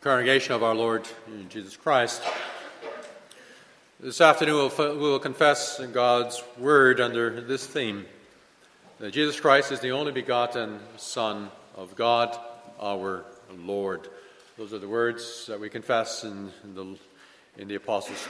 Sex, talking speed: male, 145 wpm